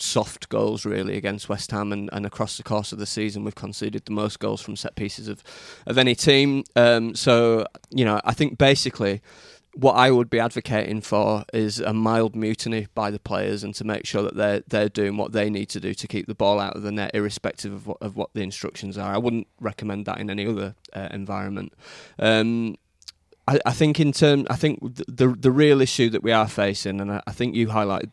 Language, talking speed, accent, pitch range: English, 230 wpm, British, 100-115 Hz